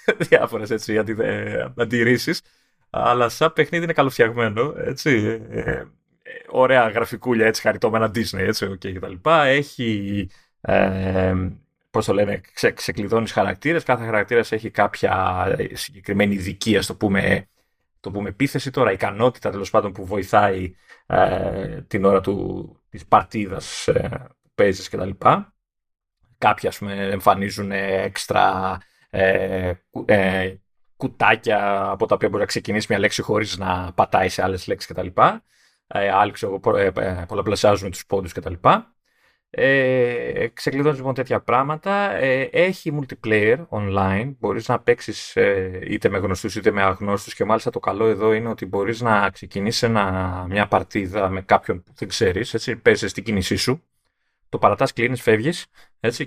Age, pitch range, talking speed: 30-49, 100-125 Hz, 135 wpm